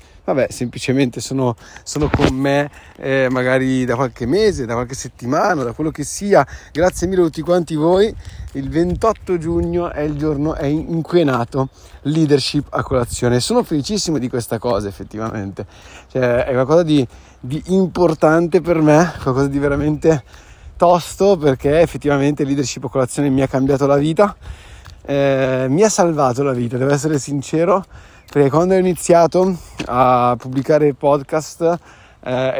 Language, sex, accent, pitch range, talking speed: Italian, male, native, 120-150 Hz, 150 wpm